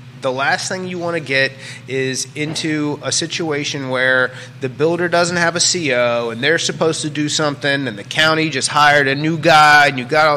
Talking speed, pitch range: 205 wpm, 130-160 Hz